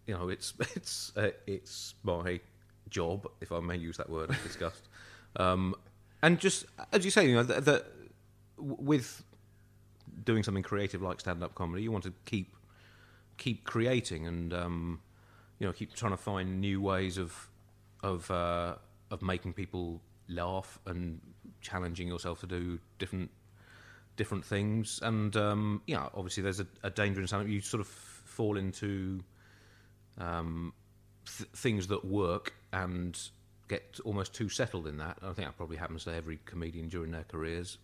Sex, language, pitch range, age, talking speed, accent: male, English, 90-105 Hz, 30-49, 165 wpm, British